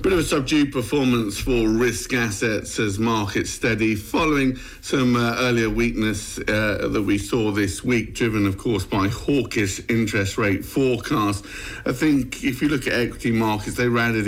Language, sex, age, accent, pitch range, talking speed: English, male, 50-69, British, 105-125 Hz, 170 wpm